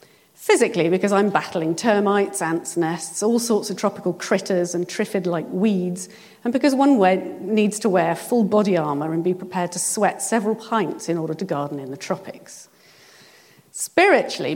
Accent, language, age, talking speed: British, English, 40-59, 160 wpm